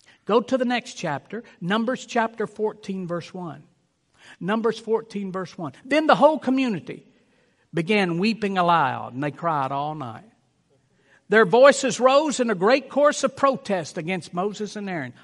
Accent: American